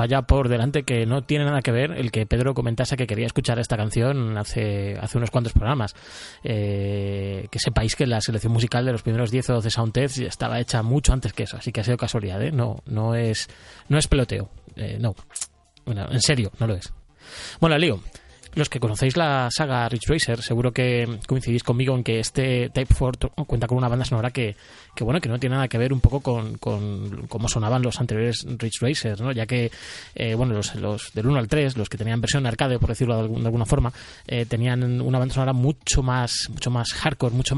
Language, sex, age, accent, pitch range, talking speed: Spanish, male, 20-39, Spanish, 115-130 Hz, 225 wpm